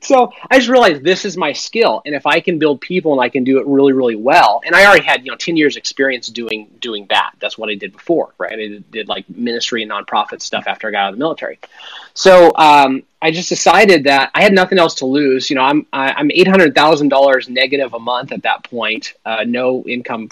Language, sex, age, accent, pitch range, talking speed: English, male, 30-49, American, 130-190 Hz, 235 wpm